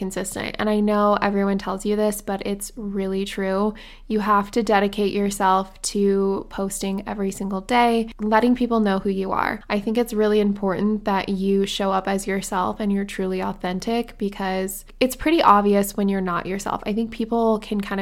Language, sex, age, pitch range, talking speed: English, female, 20-39, 195-215 Hz, 185 wpm